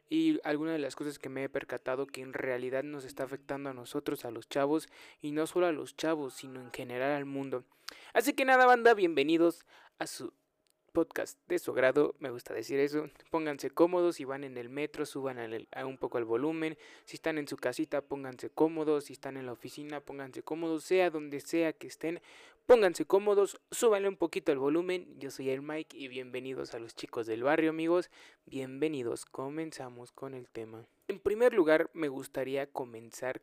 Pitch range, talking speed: 135-170 Hz, 190 wpm